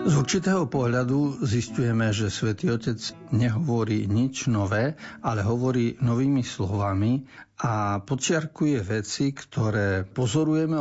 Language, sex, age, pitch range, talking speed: Slovak, male, 60-79, 110-135 Hz, 105 wpm